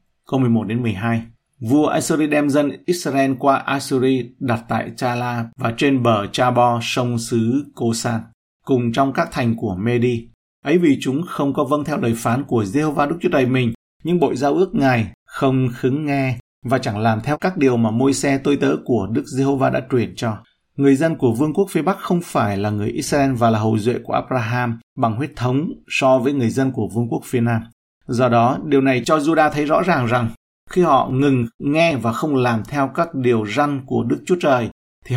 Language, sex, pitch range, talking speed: Vietnamese, male, 115-140 Hz, 205 wpm